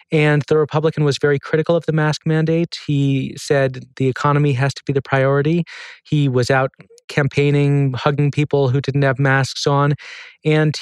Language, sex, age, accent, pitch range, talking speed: English, male, 30-49, American, 125-145 Hz, 170 wpm